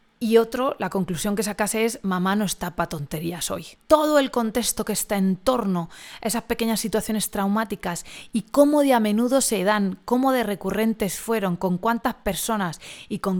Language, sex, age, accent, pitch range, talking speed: Spanish, female, 20-39, Spanish, 180-230 Hz, 185 wpm